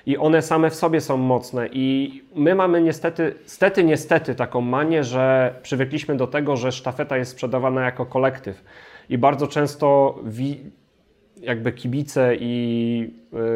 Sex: male